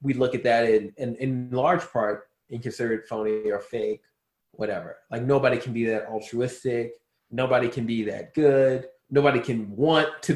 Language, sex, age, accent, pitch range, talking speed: English, male, 20-39, American, 110-140 Hz, 175 wpm